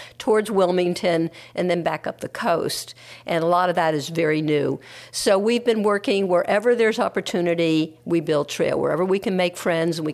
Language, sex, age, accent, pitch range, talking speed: English, female, 50-69, American, 150-180 Hz, 205 wpm